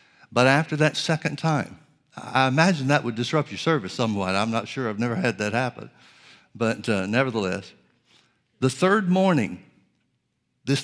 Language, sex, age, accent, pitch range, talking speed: English, male, 60-79, American, 115-135 Hz, 155 wpm